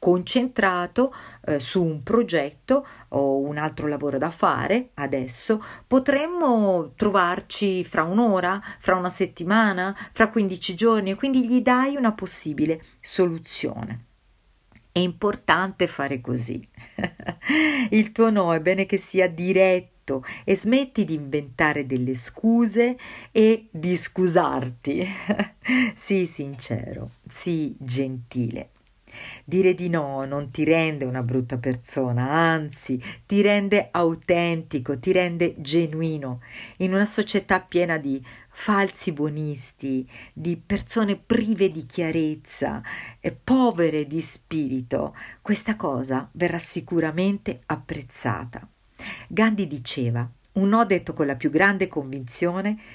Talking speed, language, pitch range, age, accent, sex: 115 wpm, Italian, 145-200 Hz, 50-69, native, female